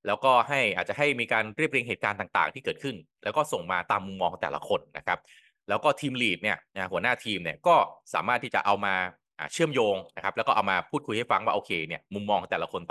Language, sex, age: Thai, male, 20-39